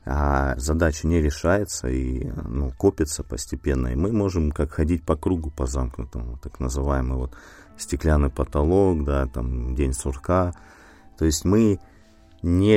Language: Russian